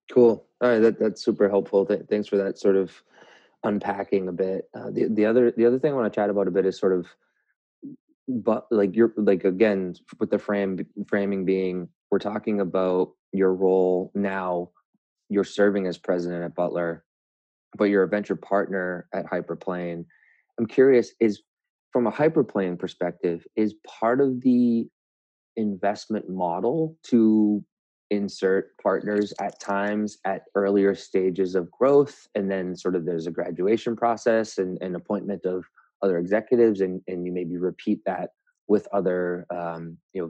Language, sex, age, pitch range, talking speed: English, male, 20-39, 90-105 Hz, 165 wpm